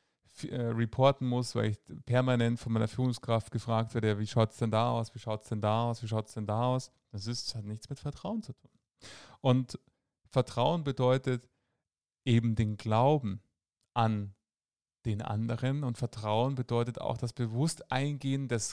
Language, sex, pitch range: German, male, 110-135 Hz